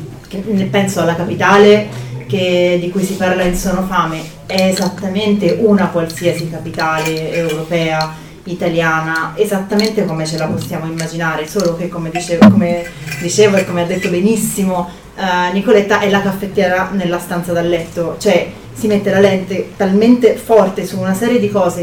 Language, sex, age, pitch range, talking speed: Italian, female, 30-49, 170-205 Hz, 145 wpm